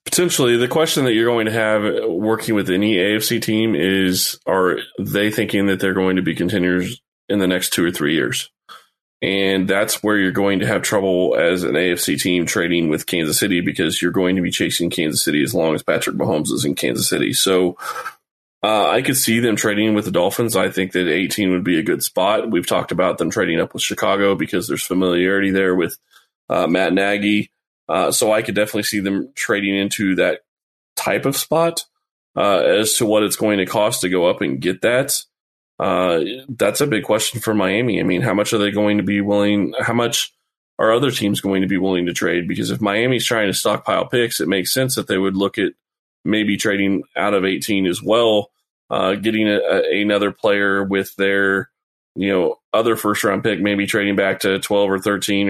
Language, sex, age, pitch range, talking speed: English, male, 20-39, 95-110 Hz, 210 wpm